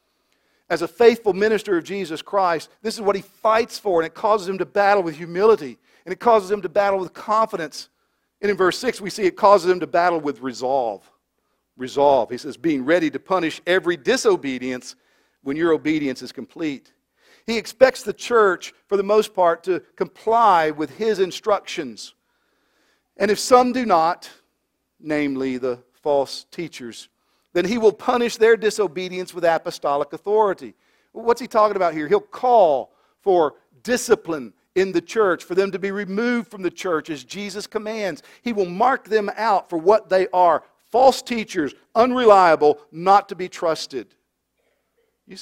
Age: 50-69